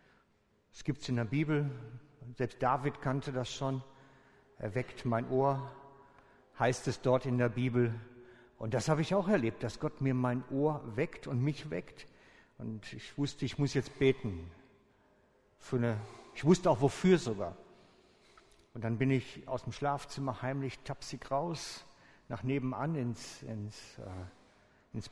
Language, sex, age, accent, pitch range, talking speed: German, male, 60-79, German, 115-140 Hz, 160 wpm